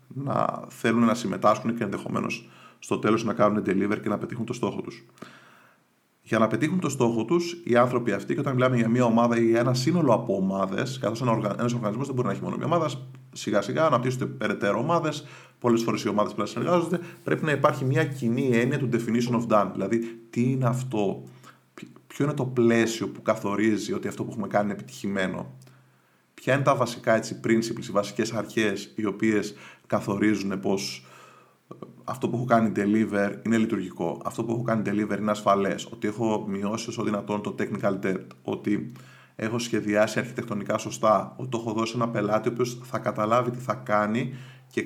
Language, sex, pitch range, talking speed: Greek, male, 105-130 Hz, 185 wpm